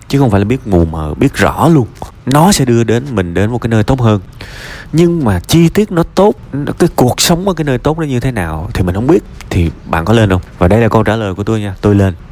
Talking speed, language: 285 wpm, Vietnamese